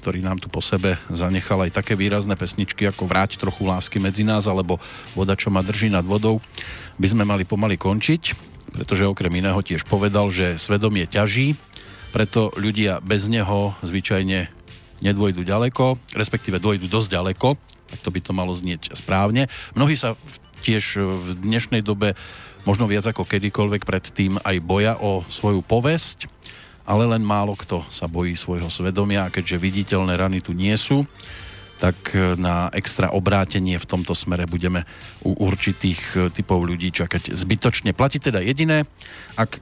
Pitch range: 90-110 Hz